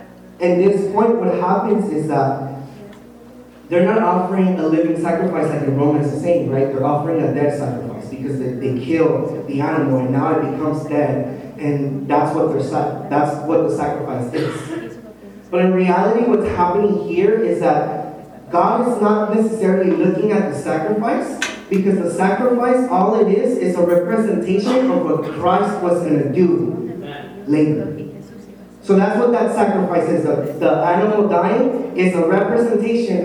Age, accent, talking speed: 20-39, American, 160 wpm